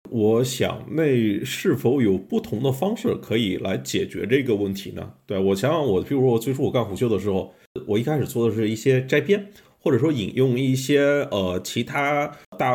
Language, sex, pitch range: Chinese, male, 105-150 Hz